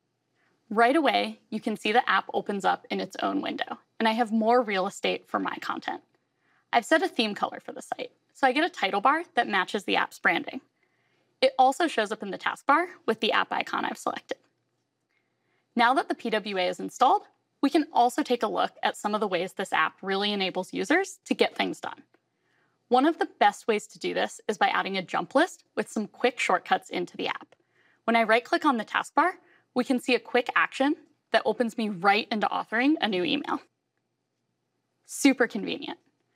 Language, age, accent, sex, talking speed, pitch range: English, 10-29, American, female, 205 wpm, 215-290 Hz